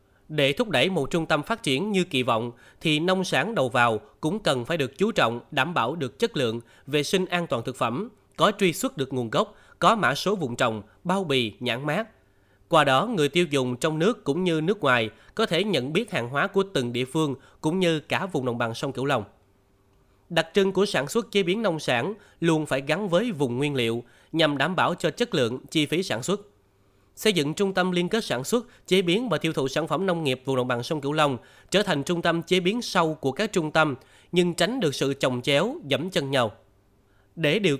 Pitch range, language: 130-185 Hz, Vietnamese